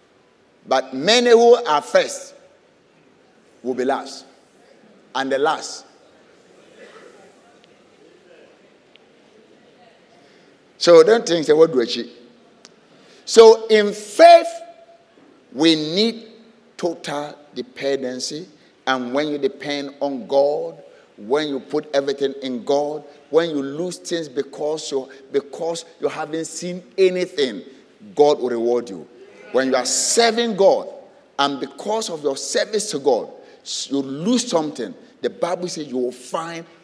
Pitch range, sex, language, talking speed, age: 145-230 Hz, male, English, 120 wpm, 50-69